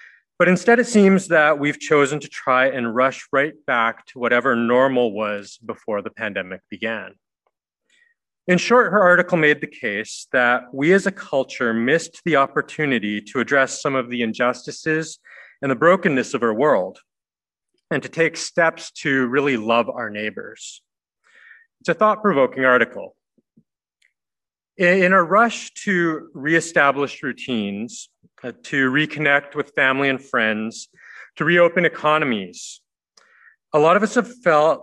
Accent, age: American, 30-49